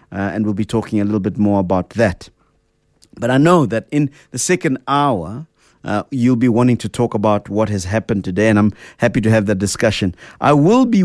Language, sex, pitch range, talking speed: English, male, 105-130 Hz, 215 wpm